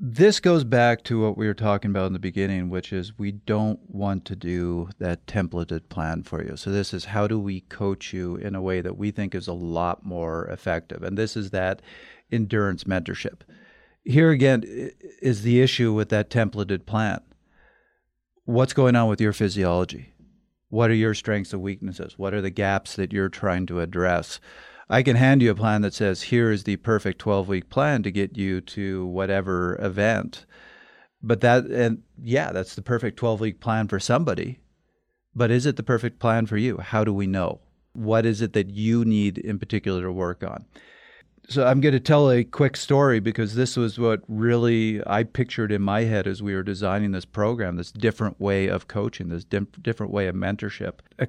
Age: 50-69